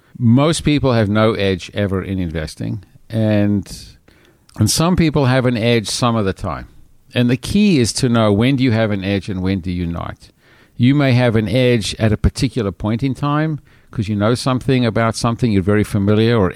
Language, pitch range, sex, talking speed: English, 100-125 Hz, male, 205 wpm